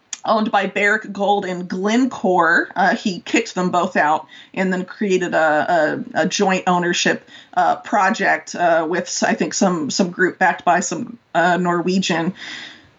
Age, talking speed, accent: 30-49, 155 wpm, American